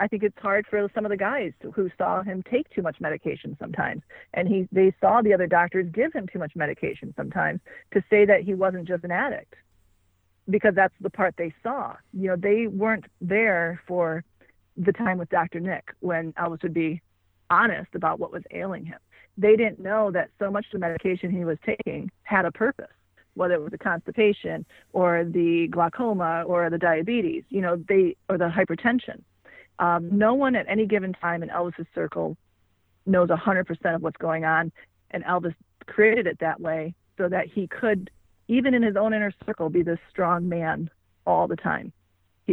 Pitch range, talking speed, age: 170-200 Hz, 195 wpm, 40-59